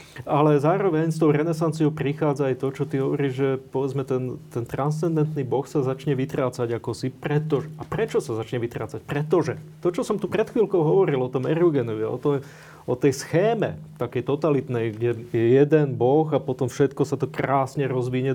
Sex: male